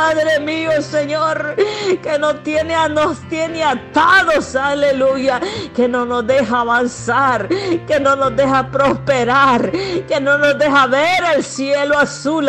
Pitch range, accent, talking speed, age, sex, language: 260-295 Hz, American, 135 wpm, 50-69, female, Spanish